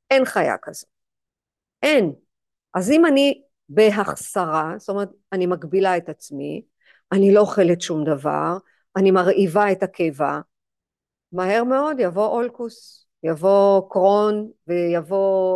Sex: female